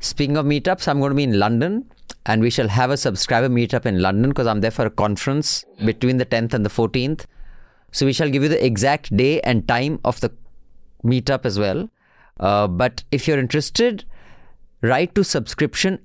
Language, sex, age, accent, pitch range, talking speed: English, male, 30-49, Indian, 110-140 Hz, 200 wpm